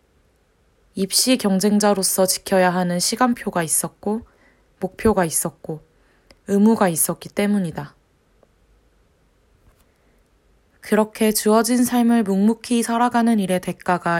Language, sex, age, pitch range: Korean, female, 20-39, 165-220 Hz